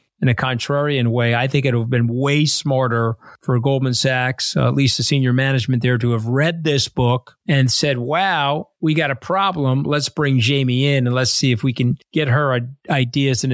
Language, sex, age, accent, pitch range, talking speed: English, male, 40-59, American, 125-150 Hz, 215 wpm